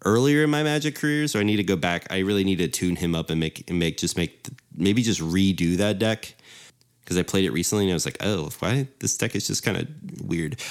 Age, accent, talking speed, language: 30-49, American, 265 wpm, English